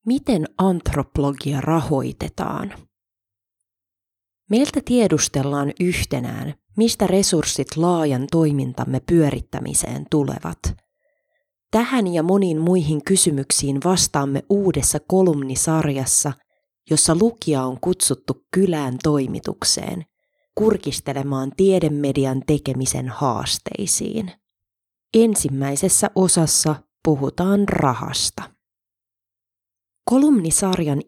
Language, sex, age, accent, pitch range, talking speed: Finnish, female, 30-49, native, 135-190 Hz, 70 wpm